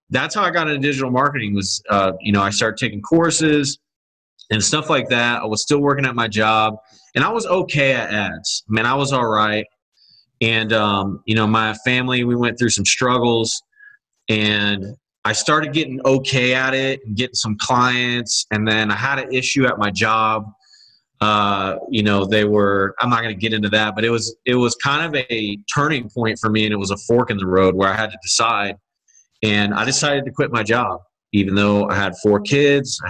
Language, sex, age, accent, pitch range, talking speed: English, male, 30-49, American, 105-135 Hz, 215 wpm